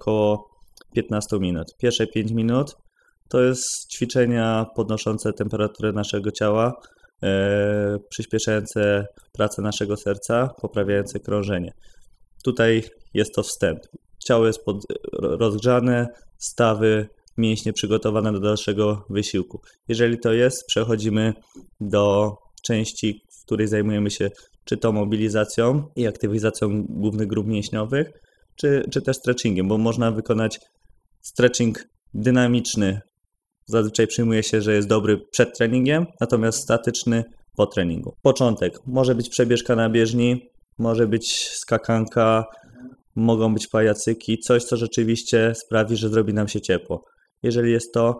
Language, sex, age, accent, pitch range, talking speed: Polish, male, 20-39, native, 105-120 Hz, 120 wpm